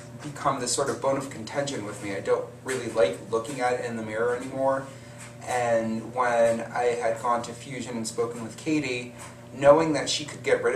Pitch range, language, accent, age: 115-135 Hz, English, American, 30-49